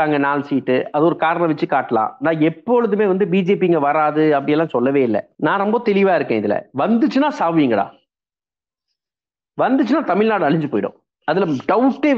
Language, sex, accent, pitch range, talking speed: Tamil, male, native, 165-240 Hz, 150 wpm